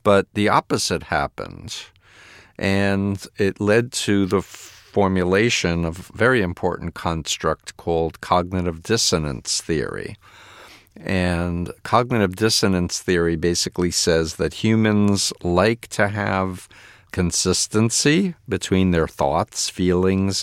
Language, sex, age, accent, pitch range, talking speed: English, male, 50-69, American, 85-105 Hz, 105 wpm